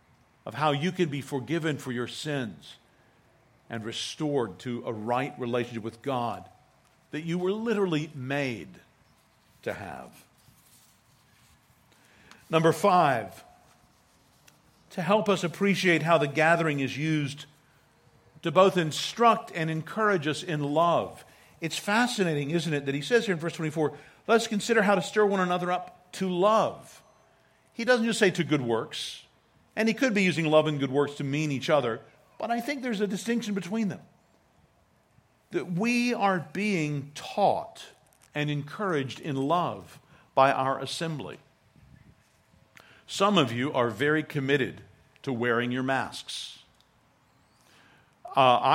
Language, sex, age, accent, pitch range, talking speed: English, male, 50-69, American, 130-180 Hz, 140 wpm